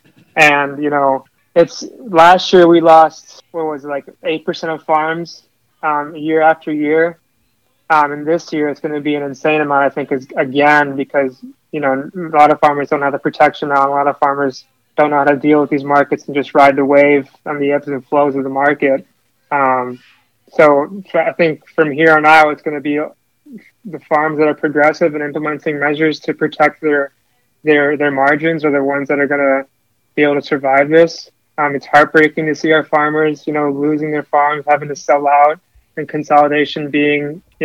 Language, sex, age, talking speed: English, male, 20-39, 210 wpm